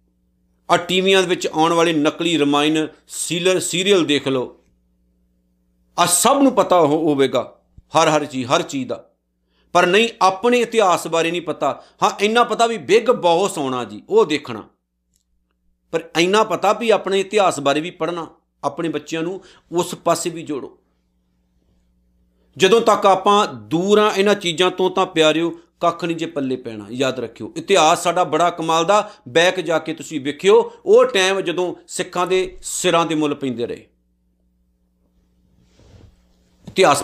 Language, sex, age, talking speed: Punjabi, male, 50-69, 140 wpm